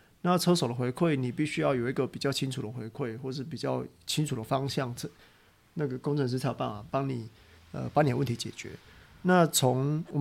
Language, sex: Chinese, male